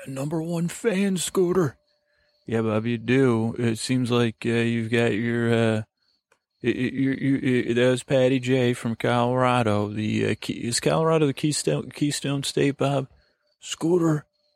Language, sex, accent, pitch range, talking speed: English, male, American, 115-140 Hz, 135 wpm